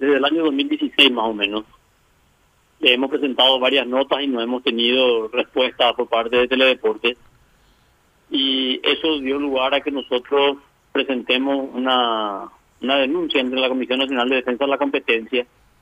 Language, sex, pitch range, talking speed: Spanish, male, 125-145 Hz, 155 wpm